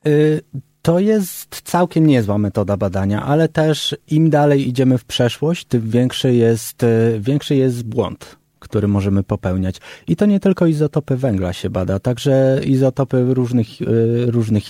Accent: native